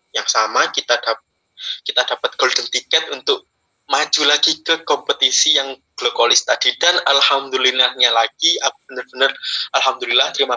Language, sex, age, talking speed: Indonesian, male, 20-39, 130 wpm